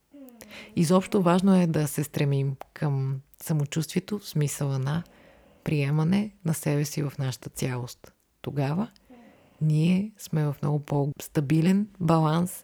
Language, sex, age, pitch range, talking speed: Bulgarian, female, 30-49, 135-160 Hz, 120 wpm